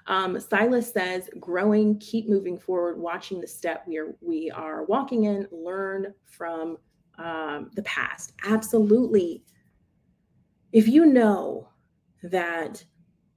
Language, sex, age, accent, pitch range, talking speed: English, female, 30-49, American, 180-225 Hz, 115 wpm